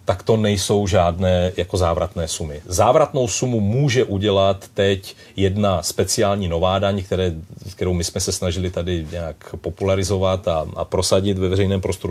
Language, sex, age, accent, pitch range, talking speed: Czech, male, 40-59, native, 95-110 Hz, 145 wpm